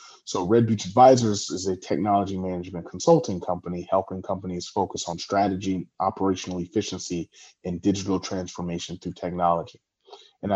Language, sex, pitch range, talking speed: English, male, 95-125 Hz, 130 wpm